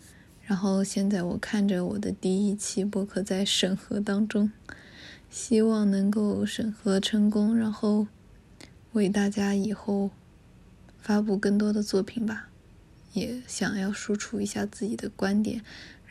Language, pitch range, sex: Chinese, 200-225 Hz, female